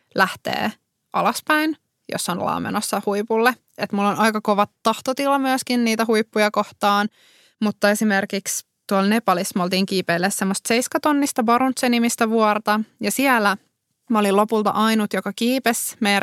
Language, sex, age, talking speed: Finnish, female, 20-39, 135 wpm